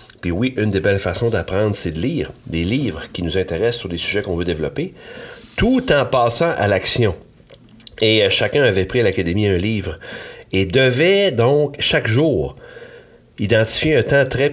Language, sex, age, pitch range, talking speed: French, male, 40-59, 90-120 Hz, 180 wpm